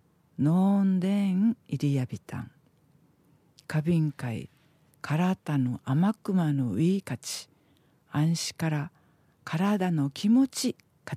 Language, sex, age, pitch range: Japanese, female, 50-69, 145-205 Hz